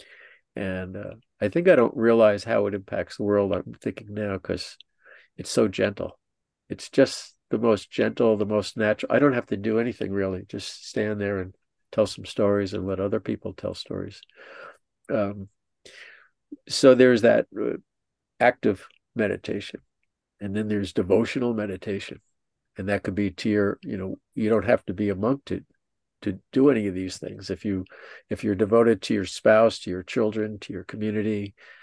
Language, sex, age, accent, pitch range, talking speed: English, male, 50-69, American, 100-115 Hz, 180 wpm